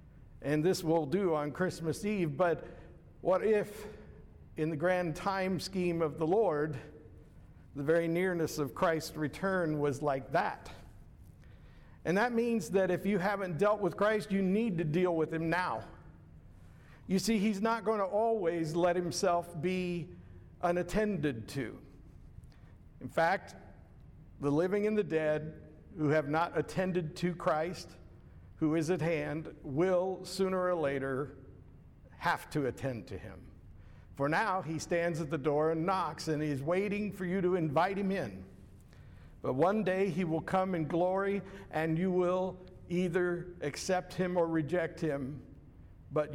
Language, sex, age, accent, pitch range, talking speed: English, male, 50-69, American, 145-185 Hz, 150 wpm